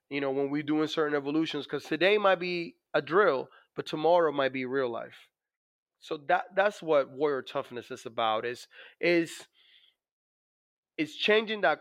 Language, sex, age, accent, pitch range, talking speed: English, male, 30-49, American, 130-160 Hz, 165 wpm